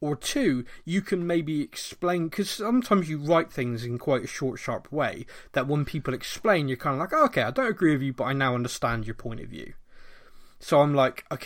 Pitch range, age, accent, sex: 110-140 Hz, 20-39, British, male